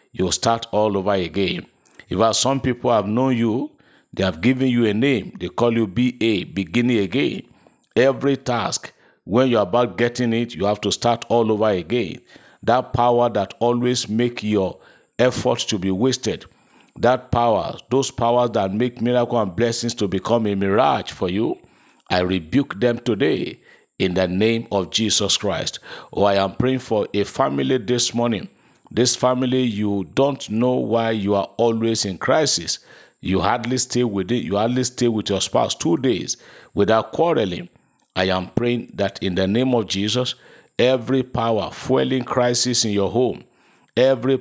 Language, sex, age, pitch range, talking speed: English, male, 50-69, 100-125 Hz, 170 wpm